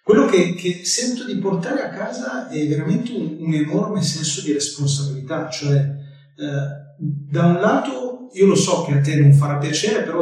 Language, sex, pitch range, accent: Italian, male, 140-170 Hz, native